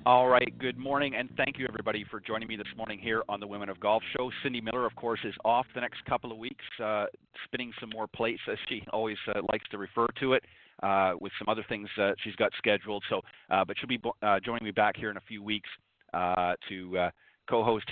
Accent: American